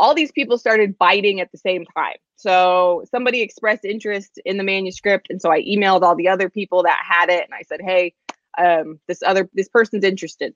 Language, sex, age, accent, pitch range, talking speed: English, female, 20-39, American, 170-215 Hz, 210 wpm